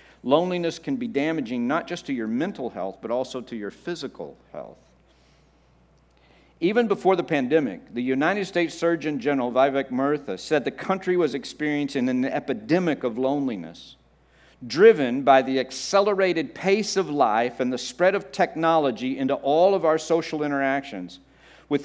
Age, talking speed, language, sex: 50-69, 150 wpm, English, male